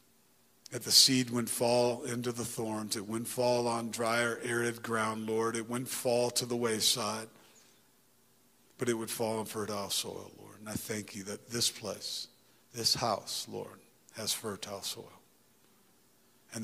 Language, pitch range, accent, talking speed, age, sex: English, 110-120 Hz, American, 160 wpm, 40-59, male